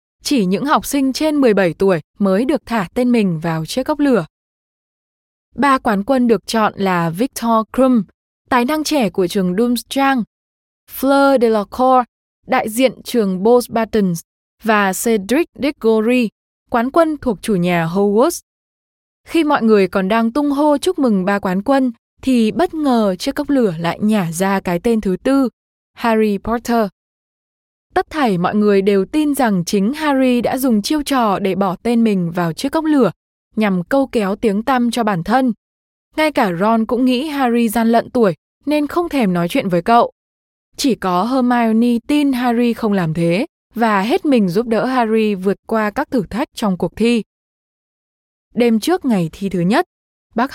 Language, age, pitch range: Vietnamese, 10-29, 200-265 Hz